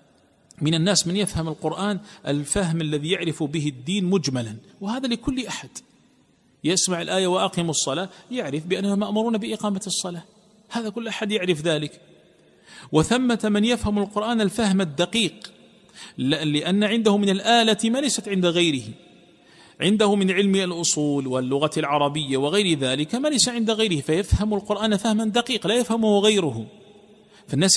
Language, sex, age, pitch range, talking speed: Arabic, male, 40-59, 130-205 Hz, 130 wpm